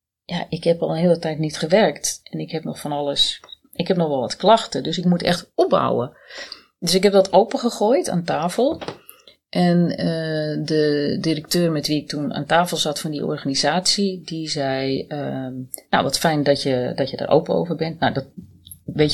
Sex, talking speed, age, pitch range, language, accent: female, 200 wpm, 30-49, 140-180 Hz, Dutch, Dutch